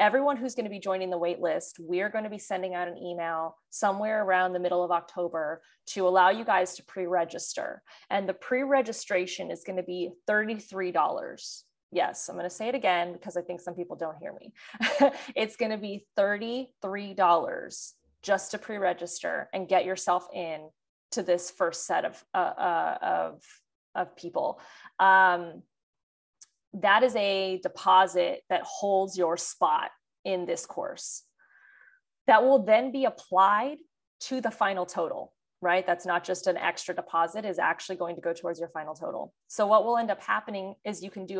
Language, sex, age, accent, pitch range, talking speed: English, female, 20-39, American, 175-205 Hz, 175 wpm